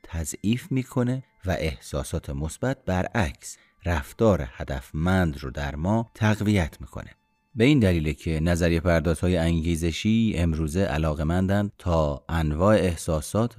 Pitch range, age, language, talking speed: 85-110 Hz, 30-49, Persian, 115 wpm